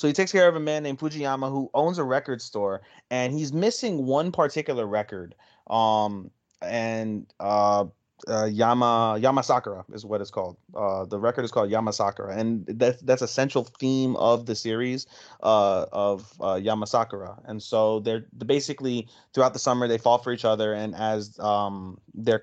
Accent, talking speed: American, 175 wpm